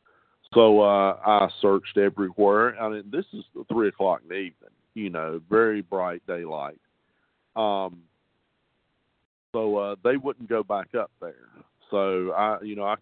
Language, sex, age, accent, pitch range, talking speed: English, male, 50-69, American, 95-115 Hz, 155 wpm